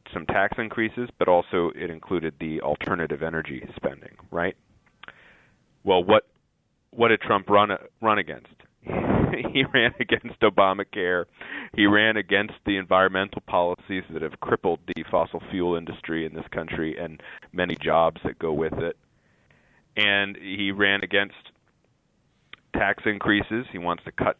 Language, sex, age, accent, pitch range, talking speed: English, male, 30-49, American, 85-110 Hz, 140 wpm